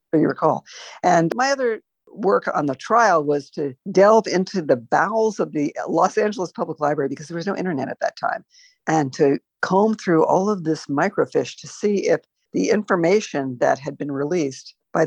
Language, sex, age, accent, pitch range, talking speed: English, female, 50-69, American, 145-195 Hz, 185 wpm